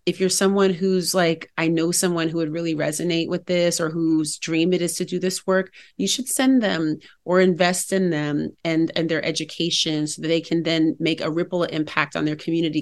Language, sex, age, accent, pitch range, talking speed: English, female, 30-49, American, 155-180 Hz, 220 wpm